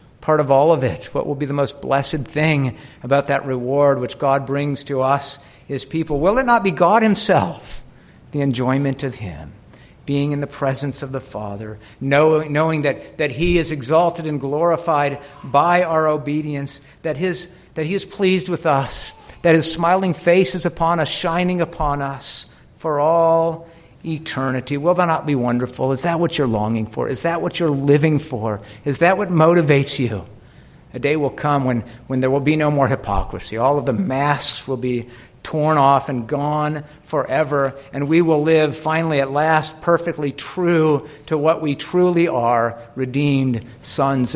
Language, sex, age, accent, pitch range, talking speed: English, male, 50-69, American, 125-160 Hz, 180 wpm